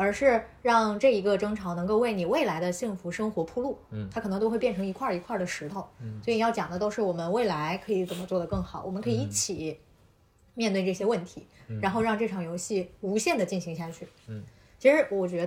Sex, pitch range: female, 170-220 Hz